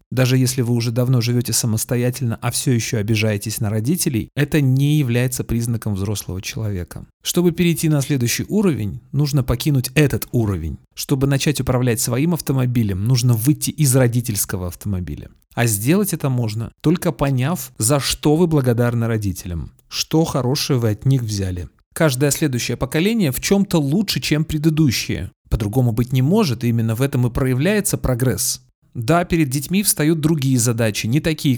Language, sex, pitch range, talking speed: Russian, male, 115-145 Hz, 155 wpm